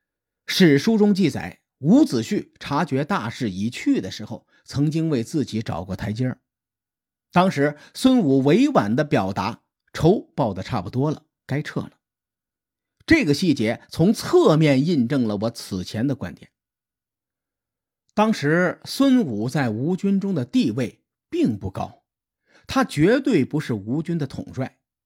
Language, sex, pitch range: Chinese, male, 110-180 Hz